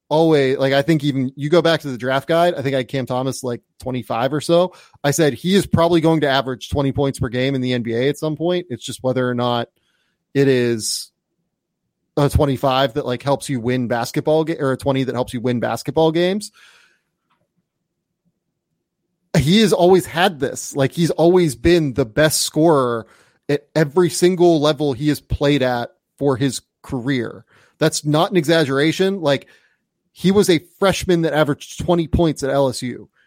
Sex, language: male, English